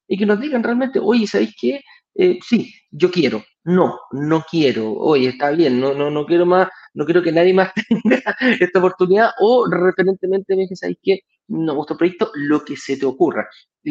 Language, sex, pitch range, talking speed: Spanish, male, 140-200 Hz, 200 wpm